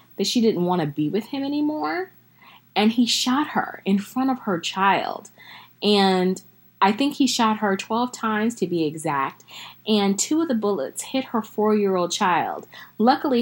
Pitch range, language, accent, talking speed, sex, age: 170-215 Hz, English, American, 175 wpm, female, 20-39